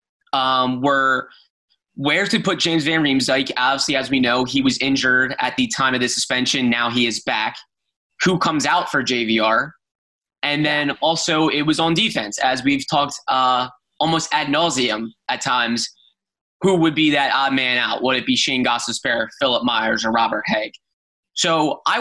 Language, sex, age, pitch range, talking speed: English, male, 20-39, 130-155 Hz, 175 wpm